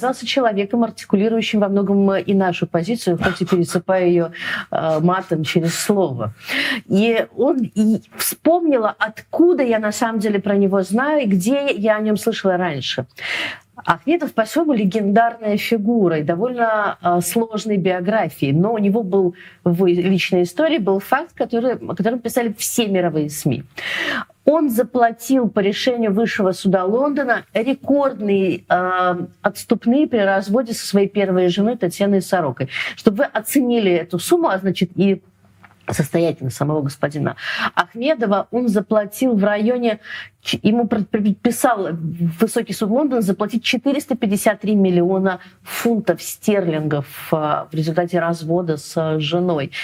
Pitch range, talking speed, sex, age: 180-235 Hz, 130 wpm, female, 50-69